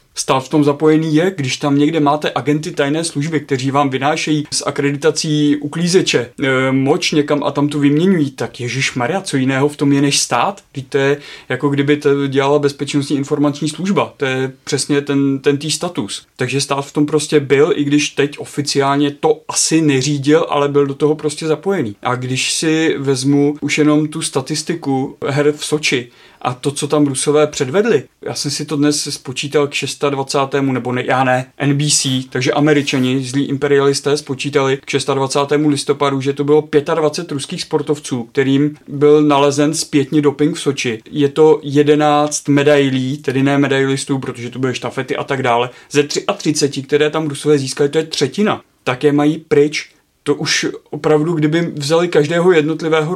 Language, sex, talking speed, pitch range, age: Czech, male, 175 wpm, 140-155 Hz, 30-49